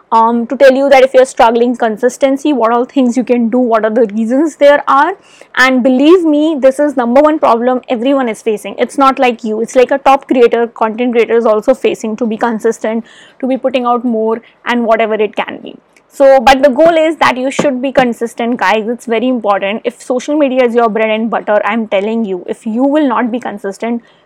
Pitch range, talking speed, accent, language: 225-275 Hz, 225 wpm, Indian, English